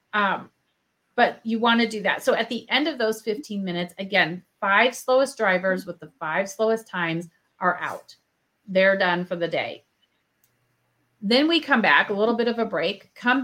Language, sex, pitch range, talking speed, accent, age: English, female, 185-230 Hz, 190 wpm, American, 30-49